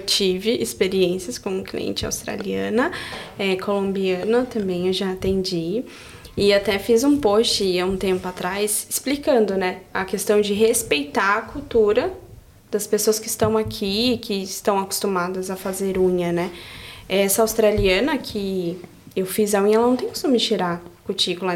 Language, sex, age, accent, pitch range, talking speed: Portuguese, female, 10-29, Brazilian, 190-230 Hz, 150 wpm